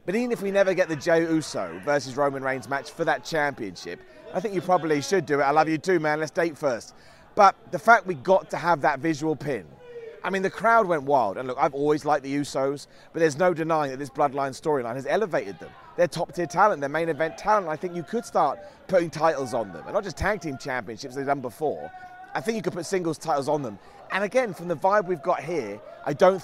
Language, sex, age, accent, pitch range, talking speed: English, male, 30-49, British, 140-190 Hz, 250 wpm